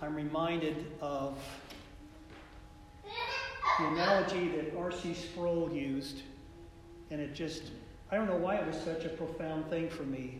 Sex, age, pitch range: male, 50-69, 140-170 Hz